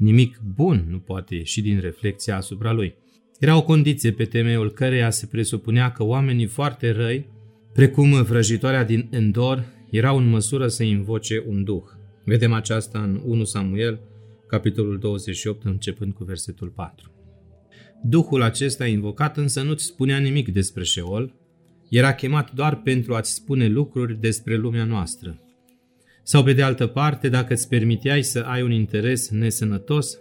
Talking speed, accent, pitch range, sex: 150 wpm, native, 105-130 Hz, male